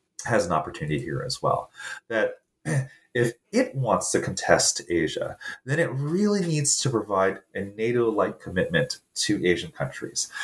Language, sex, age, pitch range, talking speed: English, male, 30-49, 95-145 Hz, 145 wpm